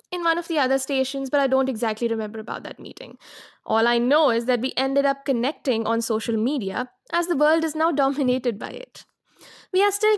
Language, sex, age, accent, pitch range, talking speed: English, female, 10-29, Indian, 230-310 Hz, 220 wpm